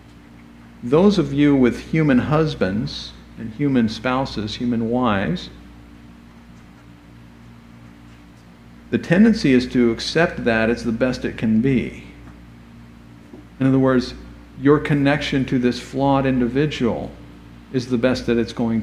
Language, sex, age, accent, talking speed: English, male, 50-69, American, 120 wpm